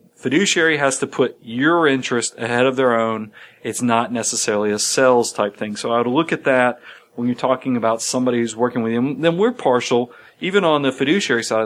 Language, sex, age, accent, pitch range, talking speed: English, male, 40-59, American, 120-145 Hz, 205 wpm